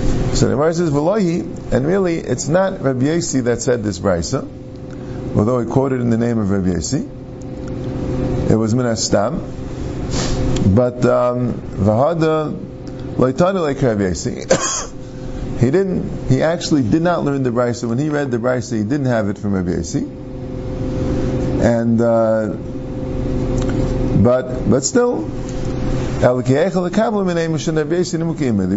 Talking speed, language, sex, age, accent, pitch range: 115 wpm, English, male, 50-69, American, 110-135 Hz